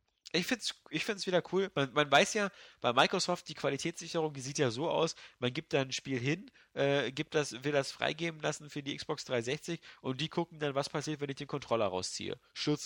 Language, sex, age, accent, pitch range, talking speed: German, male, 30-49, German, 120-155 Hz, 225 wpm